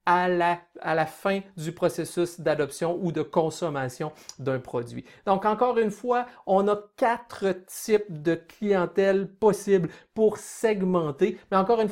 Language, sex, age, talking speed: French, male, 50-69, 145 wpm